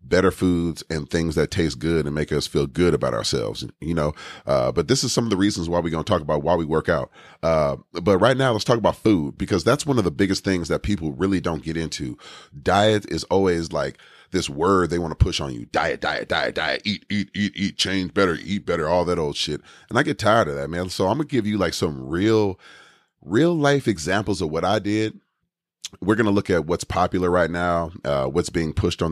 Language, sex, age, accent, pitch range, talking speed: English, male, 30-49, American, 80-100 Hz, 245 wpm